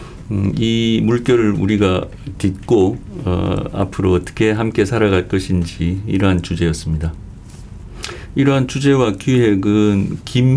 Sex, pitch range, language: male, 90-115 Hz, Chinese